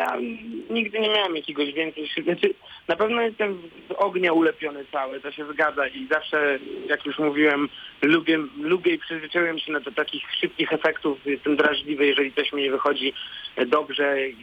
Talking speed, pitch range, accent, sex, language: 160 wpm, 155-205 Hz, native, male, Polish